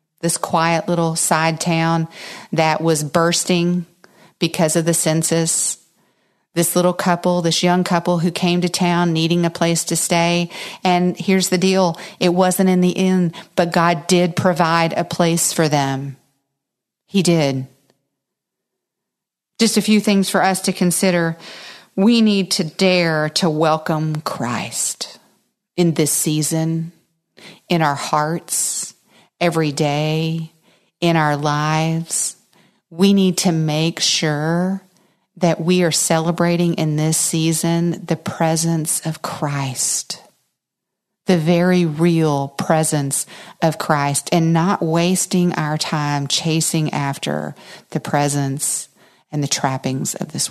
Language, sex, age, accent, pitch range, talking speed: English, female, 40-59, American, 160-185 Hz, 130 wpm